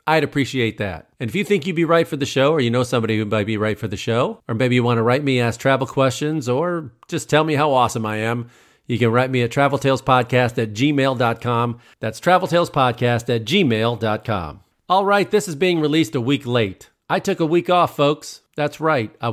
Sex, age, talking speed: male, 40-59, 225 wpm